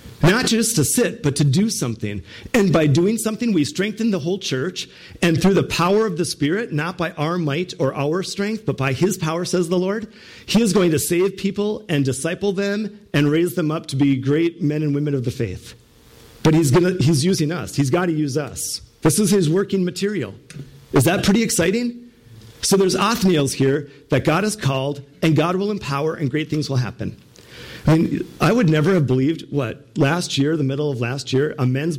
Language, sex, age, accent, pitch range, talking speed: English, male, 50-69, American, 135-180 Hz, 215 wpm